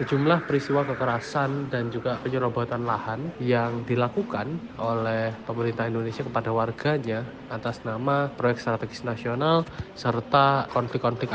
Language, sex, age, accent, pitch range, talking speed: Indonesian, male, 20-39, native, 115-135 Hz, 110 wpm